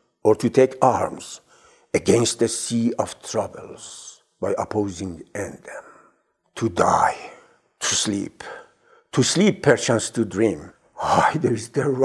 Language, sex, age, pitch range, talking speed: Persian, male, 60-79, 115-160 Hz, 105 wpm